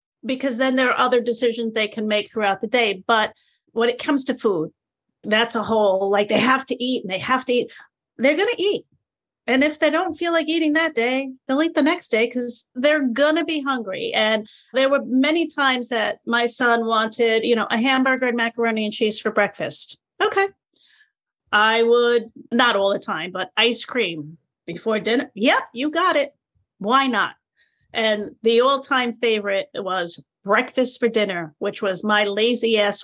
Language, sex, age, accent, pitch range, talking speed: English, female, 40-59, American, 210-265 Hz, 195 wpm